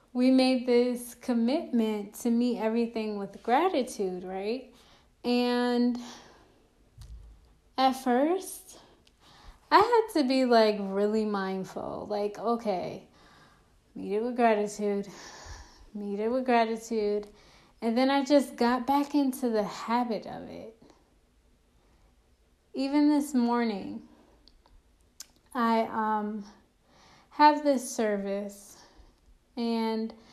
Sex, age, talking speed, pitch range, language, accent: female, 10-29, 100 wpm, 205-245 Hz, English, American